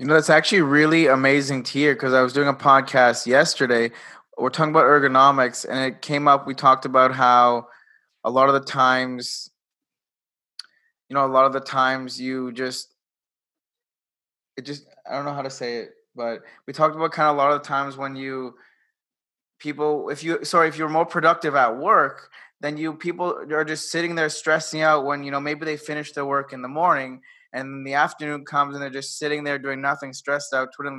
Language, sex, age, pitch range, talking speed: English, male, 20-39, 130-150 Hz, 205 wpm